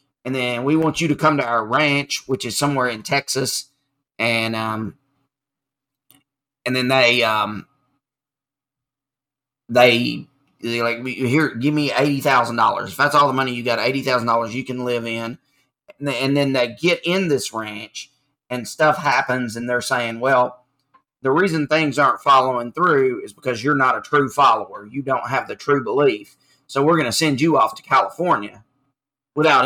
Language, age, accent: English, 30-49, American